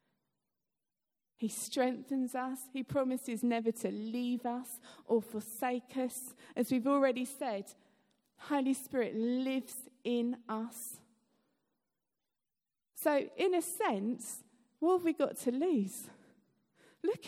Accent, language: British, English